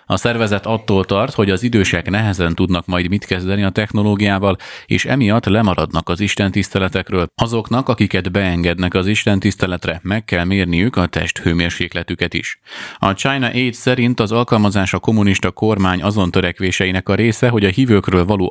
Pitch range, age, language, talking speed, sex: 90-105 Hz, 30-49, Hungarian, 155 wpm, male